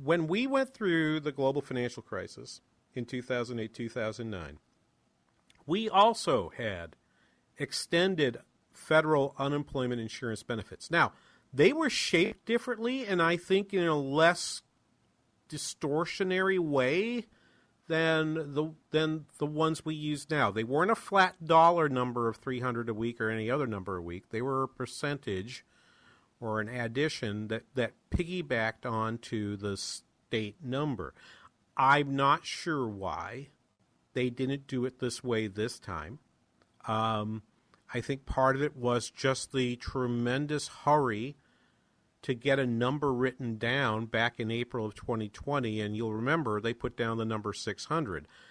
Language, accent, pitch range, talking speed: English, American, 115-150 Hz, 140 wpm